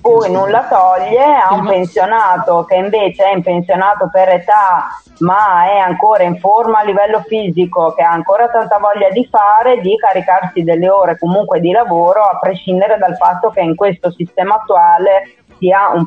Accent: native